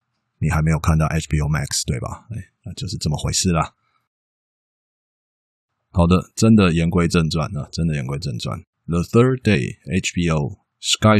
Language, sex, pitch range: Chinese, male, 80-95 Hz